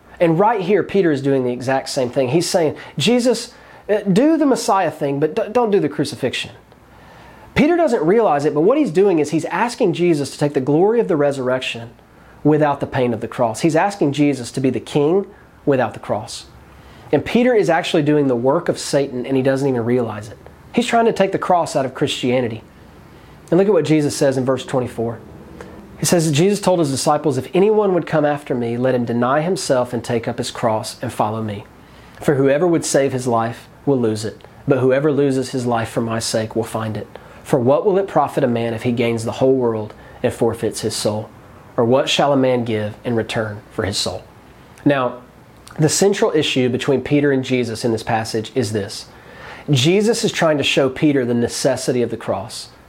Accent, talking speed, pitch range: American, 210 wpm, 120-155 Hz